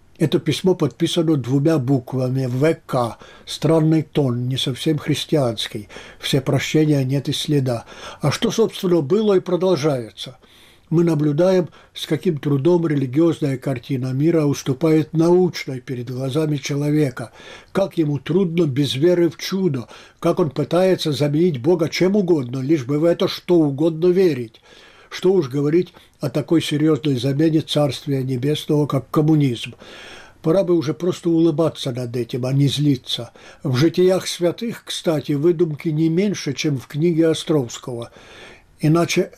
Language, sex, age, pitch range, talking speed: Russian, male, 60-79, 140-180 Hz, 135 wpm